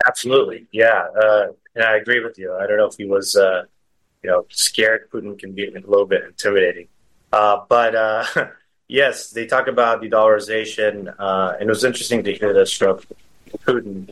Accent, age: American, 30-49